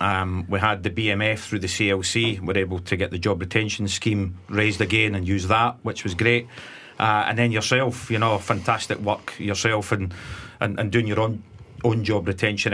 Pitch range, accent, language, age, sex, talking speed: 100-120 Hz, British, English, 40-59, male, 205 wpm